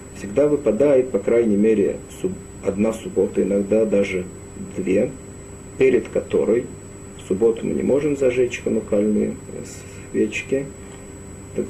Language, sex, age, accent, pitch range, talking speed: Russian, male, 40-59, native, 100-115 Hz, 110 wpm